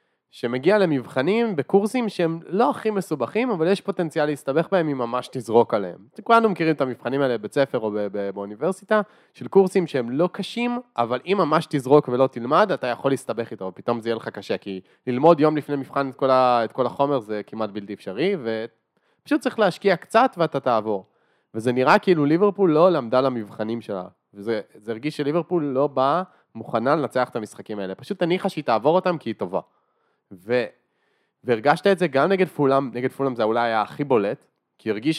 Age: 20-39